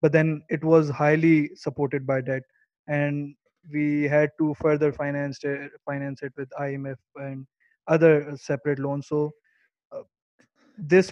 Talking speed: 140 wpm